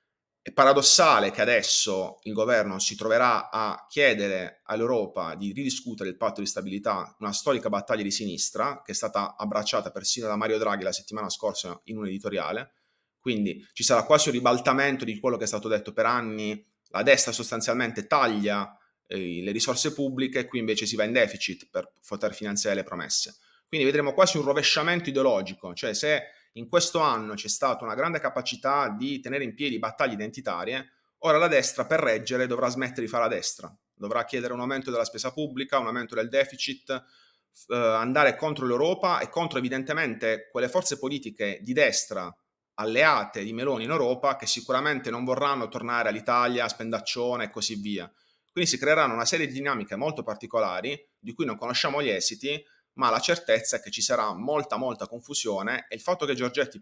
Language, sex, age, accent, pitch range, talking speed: Italian, male, 30-49, native, 110-140 Hz, 180 wpm